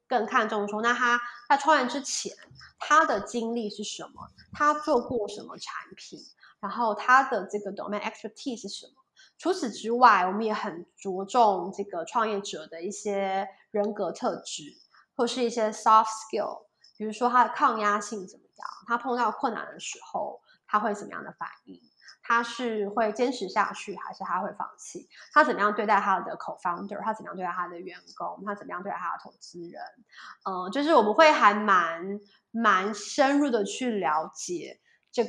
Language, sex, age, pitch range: Chinese, female, 20-39, 200-245 Hz